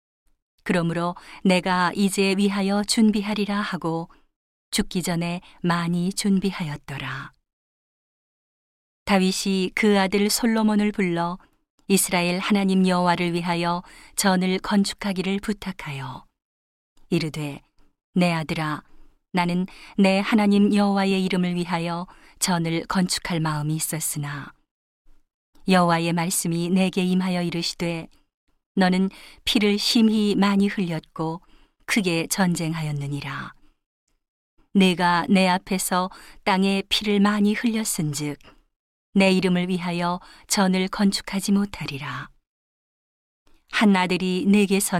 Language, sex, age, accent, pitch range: Korean, female, 40-59, native, 170-200 Hz